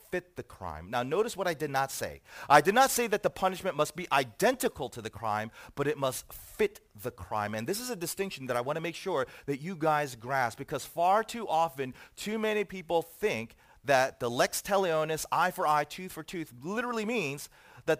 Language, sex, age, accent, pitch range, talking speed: English, male, 30-49, American, 140-190 Hz, 215 wpm